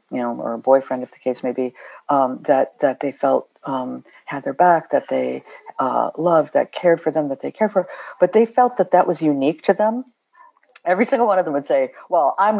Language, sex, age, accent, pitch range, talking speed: English, female, 50-69, American, 140-185 Hz, 235 wpm